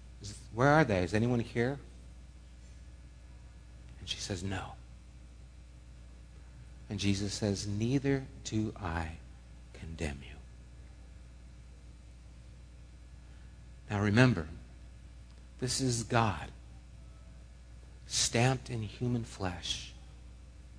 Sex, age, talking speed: male, 50-69, 80 wpm